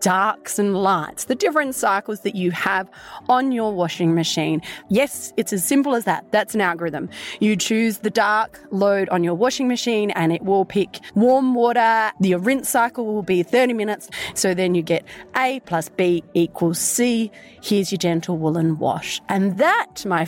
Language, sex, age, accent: English, female, 30-49, Australian